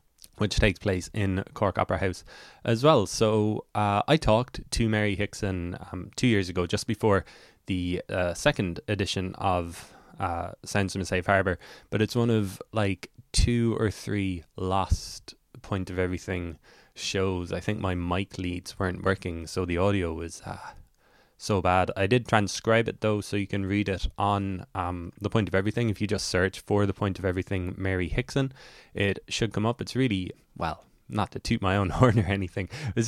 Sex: male